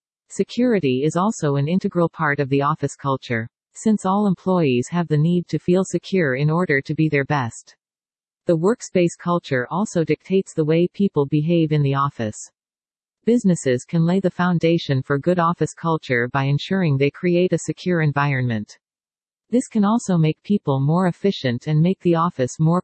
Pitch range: 140-180 Hz